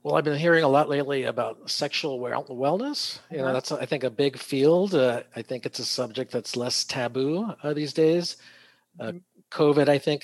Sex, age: male, 50-69